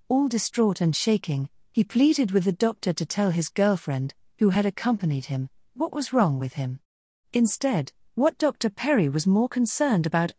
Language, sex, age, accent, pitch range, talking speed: English, female, 40-59, British, 160-220 Hz, 175 wpm